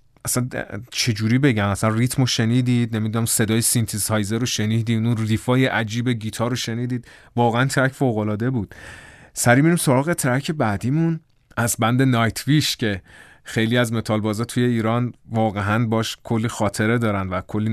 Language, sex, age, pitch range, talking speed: Persian, male, 30-49, 105-125 Hz, 150 wpm